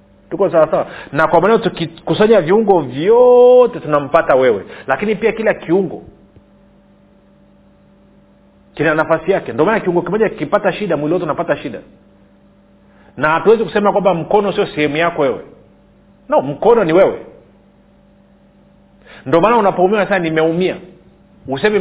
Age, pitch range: 40-59, 150-195 Hz